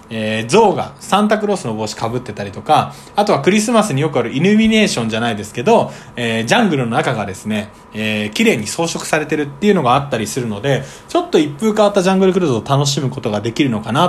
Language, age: Japanese, 20-39